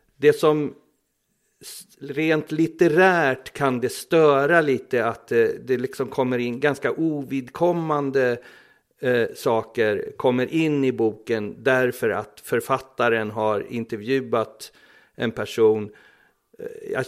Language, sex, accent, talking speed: Swedish, male, native, 95 wpm